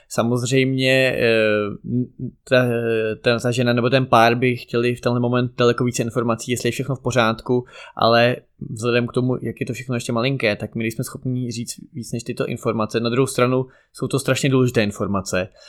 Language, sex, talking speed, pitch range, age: Czech, male, 185 wpm, 110-125 Hz, 20-39